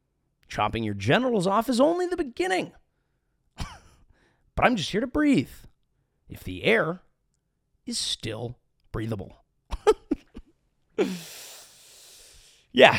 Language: English